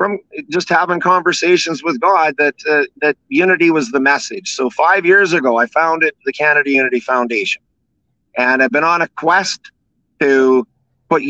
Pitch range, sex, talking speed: 130-165 Hz, male, 165 wpm